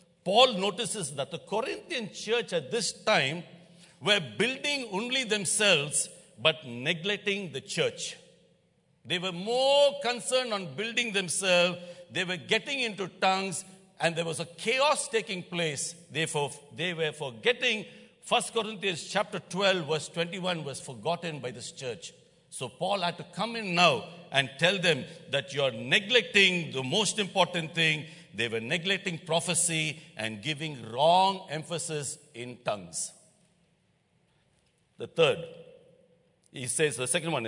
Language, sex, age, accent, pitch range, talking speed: English, male, 60-79, Indian, 160-210 Hz, 140 wpm